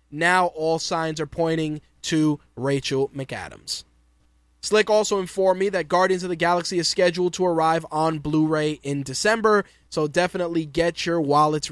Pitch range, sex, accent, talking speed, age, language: 150-180 Hz, male, American, 155 wpm, 20-39, English